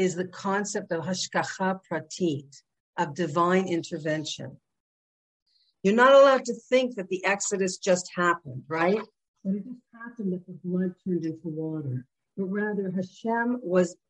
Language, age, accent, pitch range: English, 50-69, American, 170-205 Hz